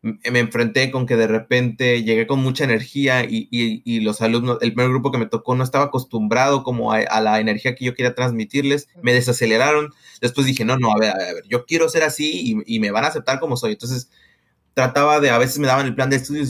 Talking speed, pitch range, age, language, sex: 240 wpm, 120-145 Hz, 20-39, Spanish, male